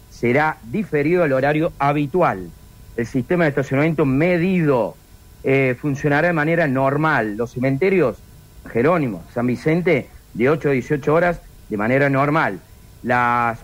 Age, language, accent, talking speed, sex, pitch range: 50-69, Spanish, Argentinian, 130 wpm, male, 135-175 Hz